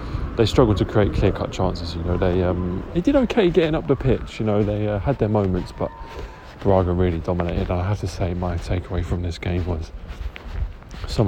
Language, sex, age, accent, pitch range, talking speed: English, male, 20-39, British, 90-105 Hz, 215 wpm